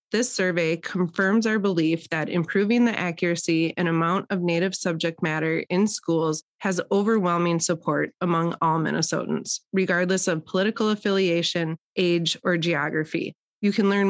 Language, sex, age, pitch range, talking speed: English, female, 20-39, 155-185 Hz, 140 wpm